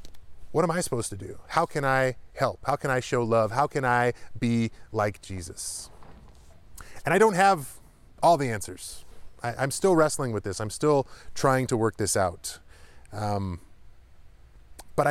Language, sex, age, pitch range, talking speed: English, male, 30-49, 100-150 Hz, 165 wpm